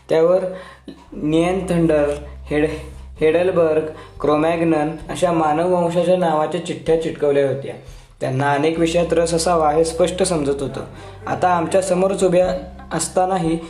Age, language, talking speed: 20-39, Marathi, 55 wpm